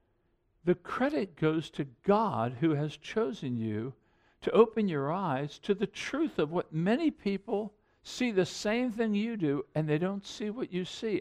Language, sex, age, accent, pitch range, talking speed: English, male, 60-79, American, 140-215 Hz, 175 wpm